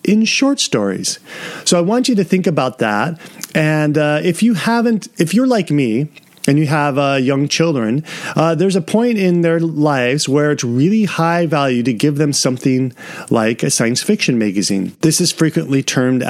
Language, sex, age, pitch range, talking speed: English, male, 30-49, 130-190 Hz, 190 wpm